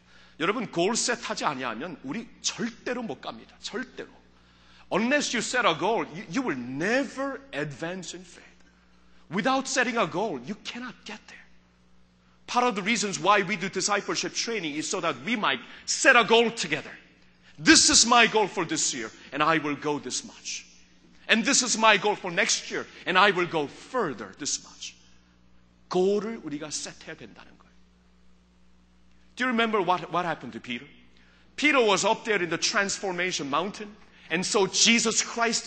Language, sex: Korean, male